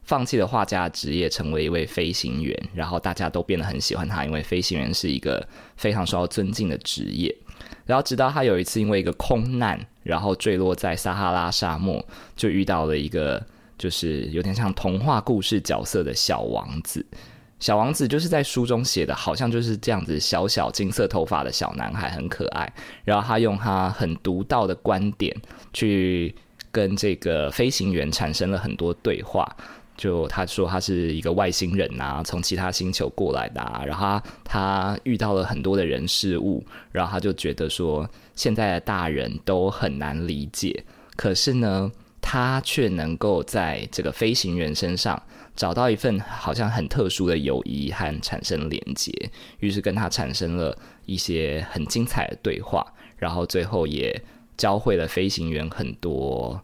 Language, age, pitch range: Chinese, 20-39, 85-110 Hz